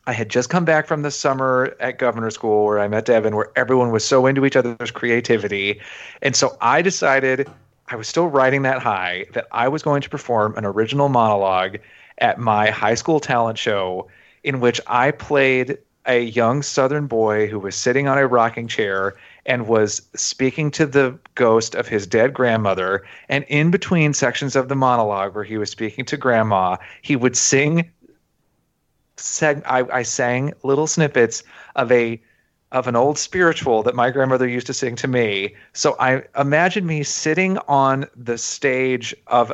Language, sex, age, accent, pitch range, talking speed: English, male, 30-49, American, 115-140 Hz, 175 wpm